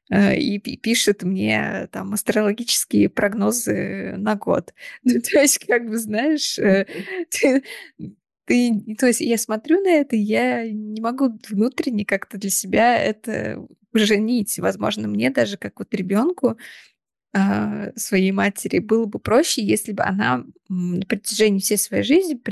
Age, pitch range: 20-39, 195-235 Hz